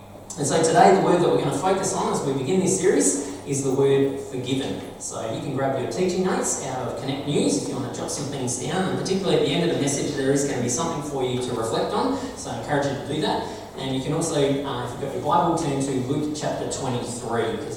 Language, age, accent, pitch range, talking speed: English, 20-39, Australian, 120-155 Hz, 275 wpm